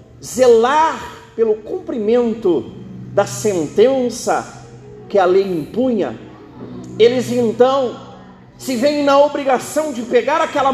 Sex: male